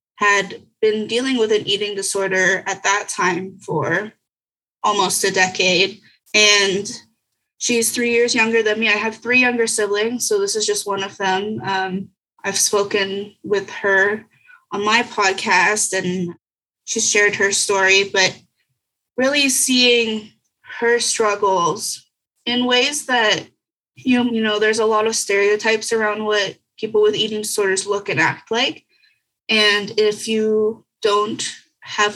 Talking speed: 145 wpm